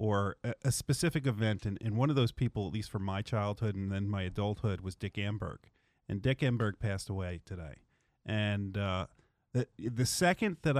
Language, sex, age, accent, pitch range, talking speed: English, male, 40-59, American, 105-145 Hz, 190 wpm